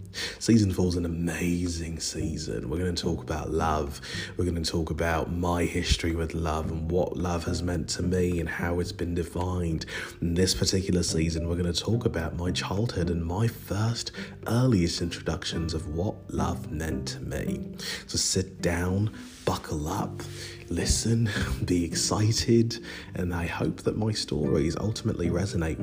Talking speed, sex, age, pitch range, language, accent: 165 wpm, male, 30-49, 80-100 Hz, English, British